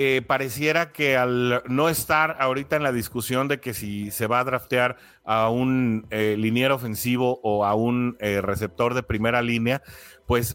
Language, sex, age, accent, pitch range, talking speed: Spanish, male, 30-49, Mexican, 110-145 Hz, 175 wpm